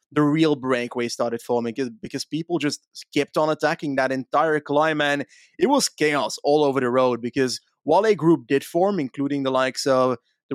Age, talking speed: 30-49, 190 wpm